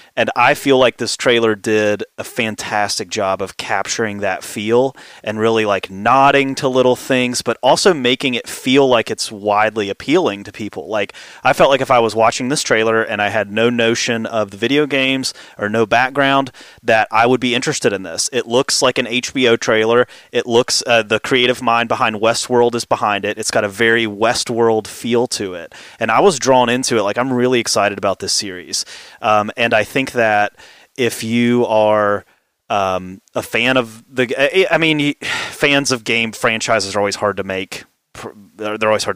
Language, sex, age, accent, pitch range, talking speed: English, male, 30-49, American, 105-130 Hz, 195 wpm